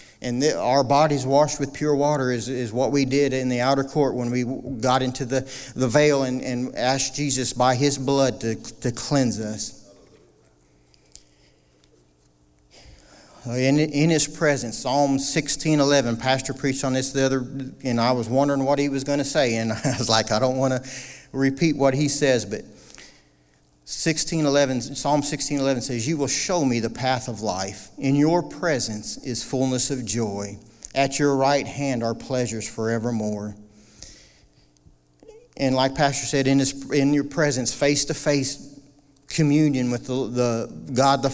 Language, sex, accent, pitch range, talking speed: English, male, American, 115-140 Hz, 160 wpm